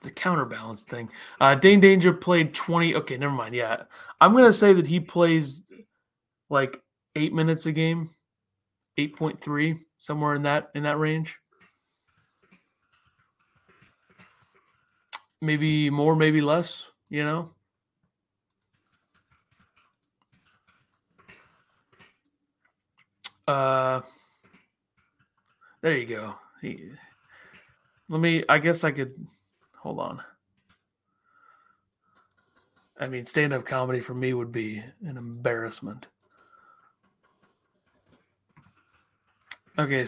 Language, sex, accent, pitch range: English, male, American, 130-165 Hz